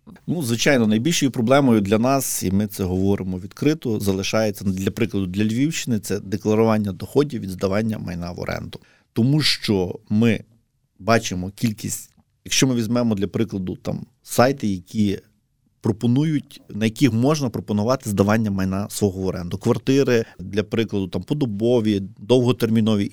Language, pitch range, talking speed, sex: Ukrainian, 105-130 Hz, 140 wpm, male